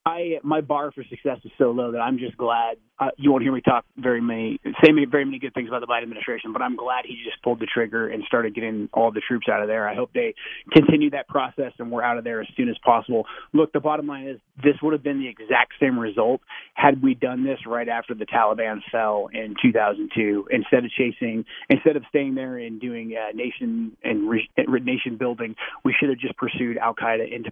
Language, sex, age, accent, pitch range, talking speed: English, male, 30-49, American, 115-145 Hz, 235 wpm